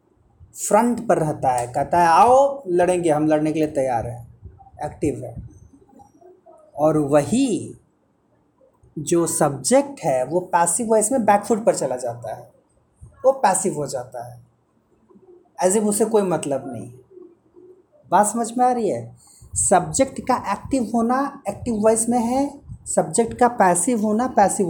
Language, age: Hindi, 30-49